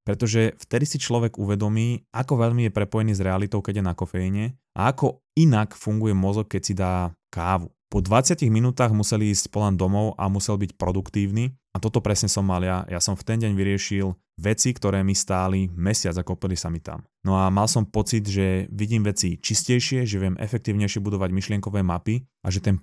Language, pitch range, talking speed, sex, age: Slovak, 95-115 Hz, 195 wpm, male, 20-39